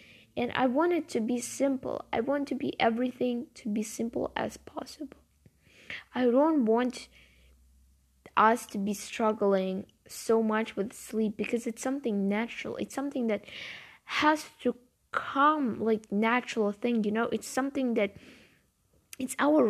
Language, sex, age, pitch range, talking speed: English, female, 10-29, 210-255 Hz, 145 wpm